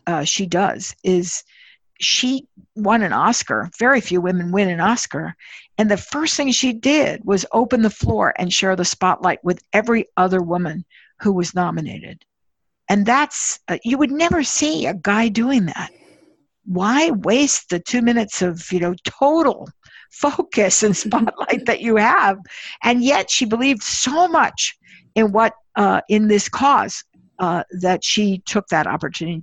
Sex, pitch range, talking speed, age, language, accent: female, 180-240 Hz, 160 wpm, 60-79, English, American